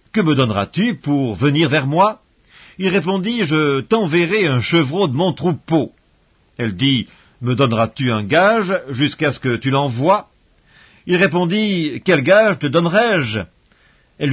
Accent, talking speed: French, 140 wpm